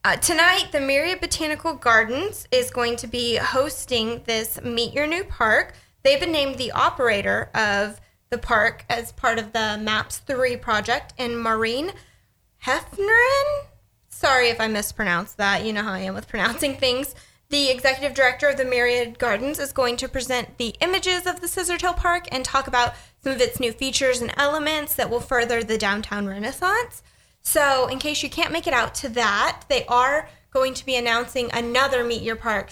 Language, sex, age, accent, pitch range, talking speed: English, female, 10-29, American, 230-285 Hz, 185 wpm